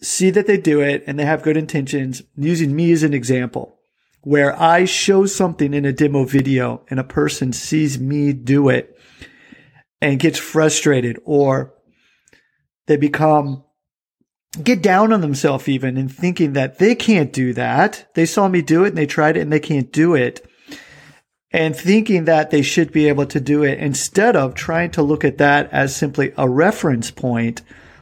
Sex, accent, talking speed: male, American, 180 wpm